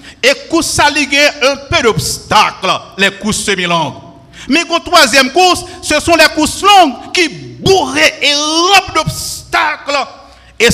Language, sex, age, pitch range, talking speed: French, male, 50-69, 190-300 Hz, 140 wpm